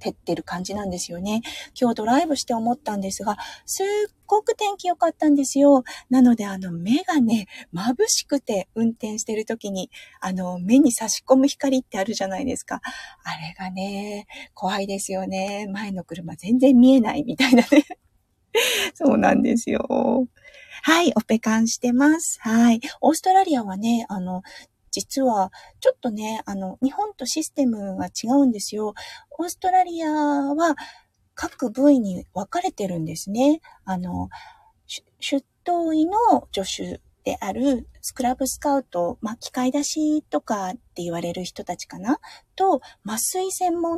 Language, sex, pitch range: Japanese, female, 200-300 Hz